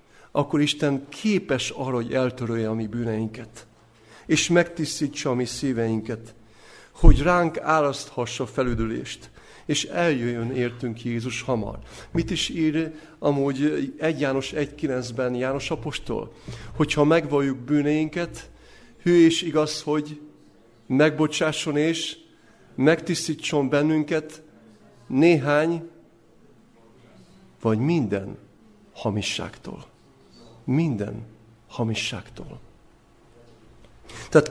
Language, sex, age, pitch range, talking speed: Hungarian, male, 50-69, 120-160 Hz, 85 wpm